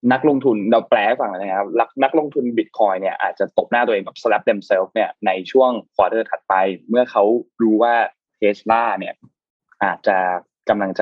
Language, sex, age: Thai, male, 20-39